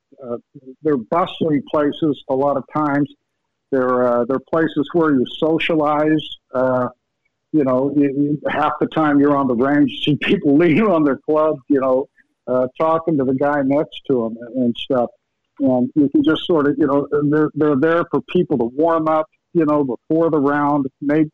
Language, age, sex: English, 60-79, male